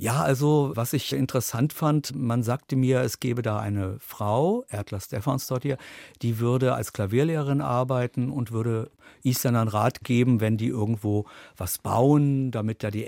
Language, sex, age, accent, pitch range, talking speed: German, male, 50-69, German, 105-135 Hz, 165 wpm